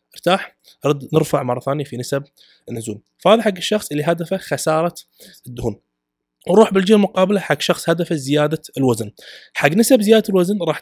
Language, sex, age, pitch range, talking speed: Arabic, male, 20-39, 135-175 Hz, 155 wpm